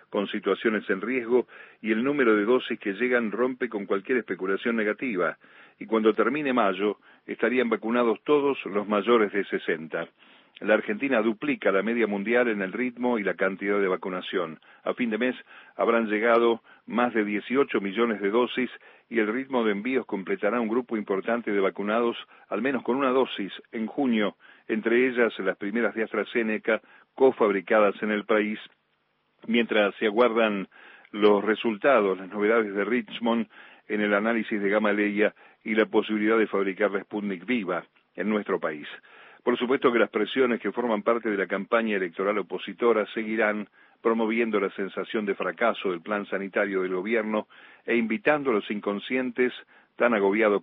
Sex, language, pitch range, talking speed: male, Spanish, 105-120 Hz, 160 wpm